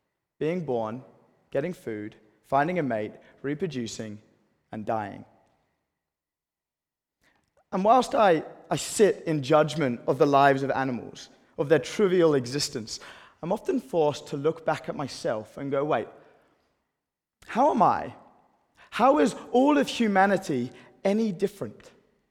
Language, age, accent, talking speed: English, 20-39, British, 125 wpm